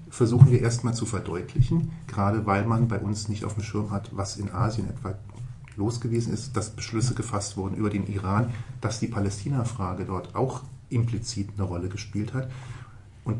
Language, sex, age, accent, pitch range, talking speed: German, male, 40-59, German, 105-125 Hz, 180 wpm